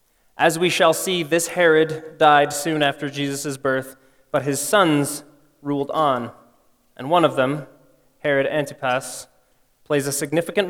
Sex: male